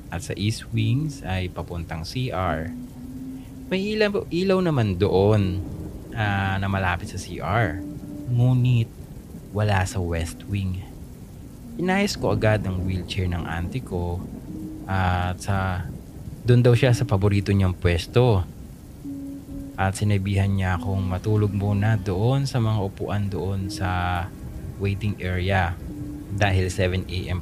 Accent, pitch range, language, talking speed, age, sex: Filipino, 90-120 Hz, English, 125 wpm, 20-39, male